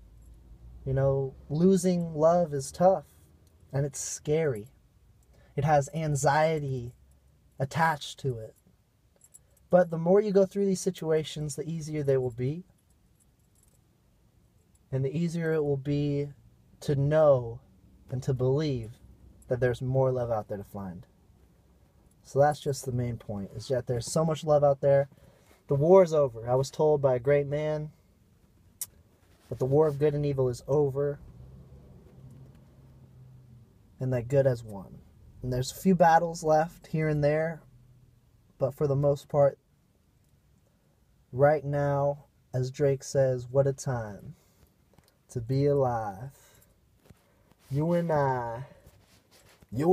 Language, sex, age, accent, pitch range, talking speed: English, male, 20-39, American, 110-150 Hz, 140 wpm